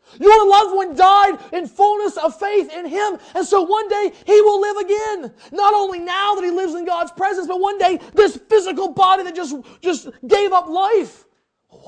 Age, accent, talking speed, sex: 30-49, American, 200 wpm, male